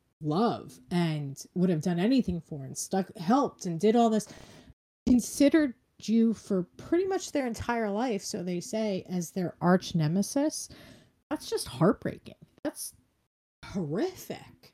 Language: English